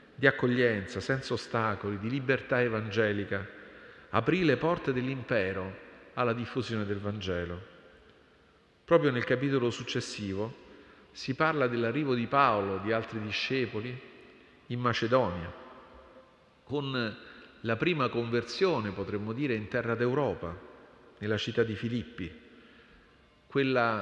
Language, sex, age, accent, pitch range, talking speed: Italian, male, 40-59, native, 105-135 Hz, 110 wpm